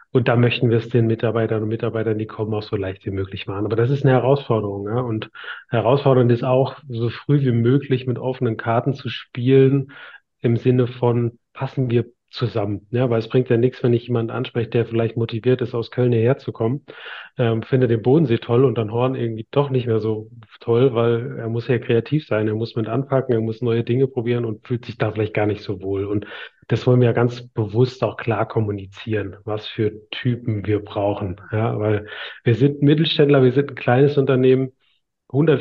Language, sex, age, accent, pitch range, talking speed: German, male, 30-49, German, 115-130 Hz, 210 wpm